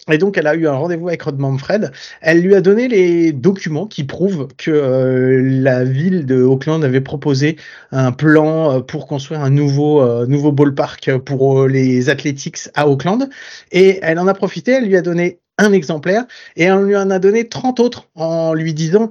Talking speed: 190 wpm